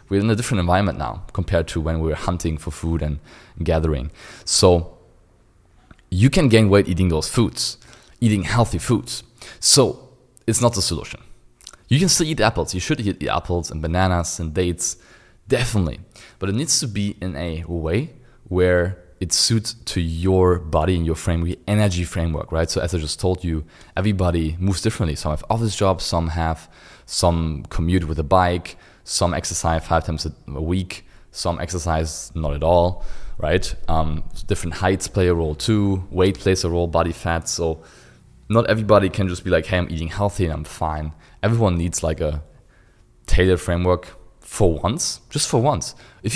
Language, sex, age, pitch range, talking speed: English, male, 20-39, 80-100 Hz, 175 wpm